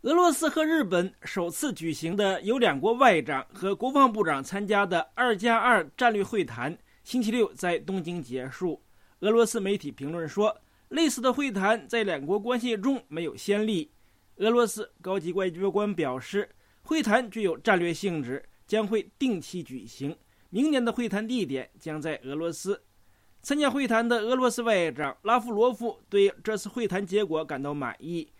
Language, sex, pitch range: English, male, 175-240 Hz